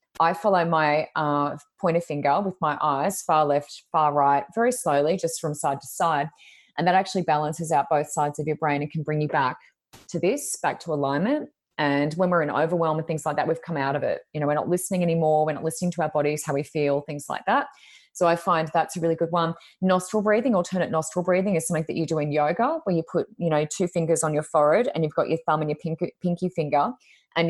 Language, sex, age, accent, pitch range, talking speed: English, female, 20-39, Australian, 150-175 Hz, 245 wpm